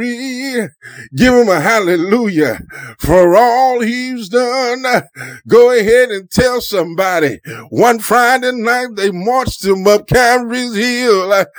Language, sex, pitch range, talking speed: English, male, 210-255 Hz, 115 wpm